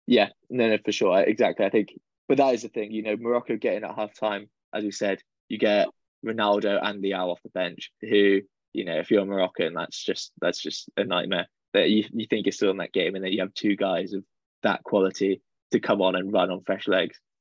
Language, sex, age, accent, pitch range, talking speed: English, male, 10-29, British, 100-115 Hz, 245 wpm